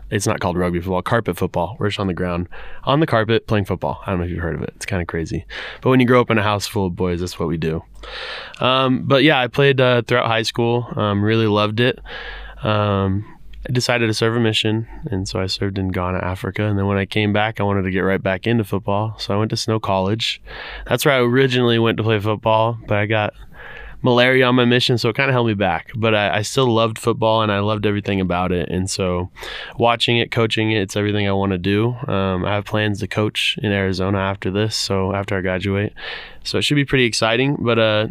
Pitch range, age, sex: 100-115 Hz, 20-39, male